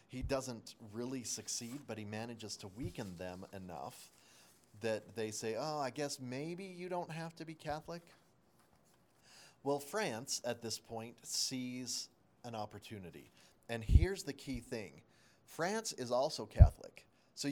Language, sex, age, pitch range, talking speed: English, male, 30-49, 105-135 Hz, 145 wpm